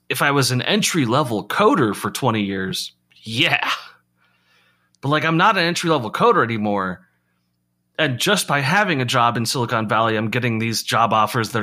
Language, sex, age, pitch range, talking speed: English, male, 30-49, 100-130 Hz, 180 wpm